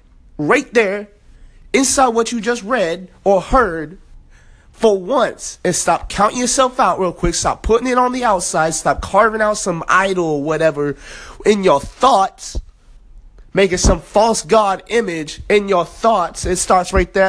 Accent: American